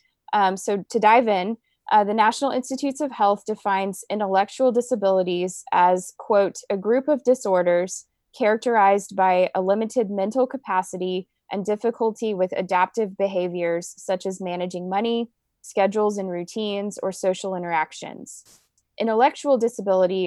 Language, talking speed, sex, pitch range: English, 125 wpm, female, 185-220 Hz